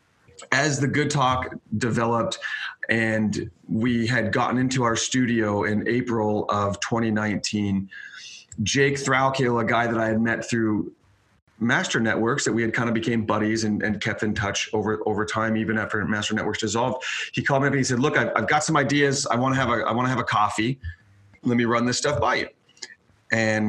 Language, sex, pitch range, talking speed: English, male, 110-135 Hz, 200 wpm